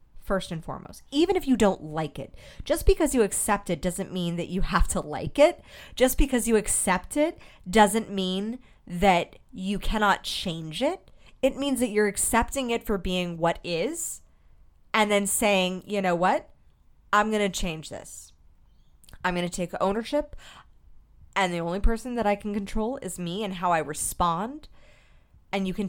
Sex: female